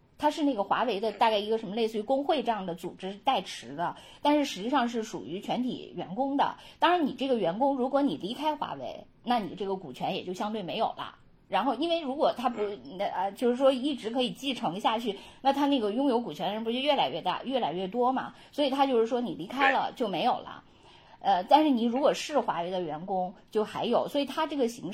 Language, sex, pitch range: Chinese, female, 205-270 Hz